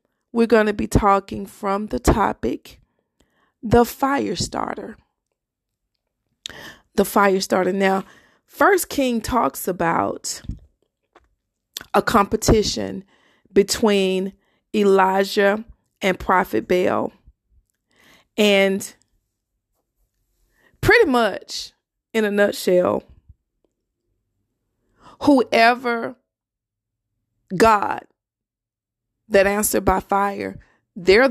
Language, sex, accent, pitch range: English, female, American, 185-230 Hz